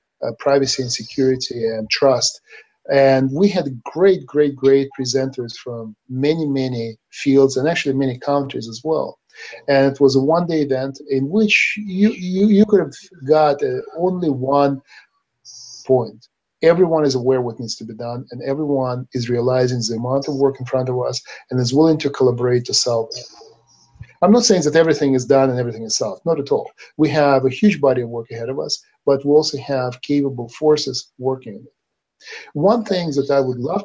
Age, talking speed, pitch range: 40-59, 195 wpm, 125-150 Hz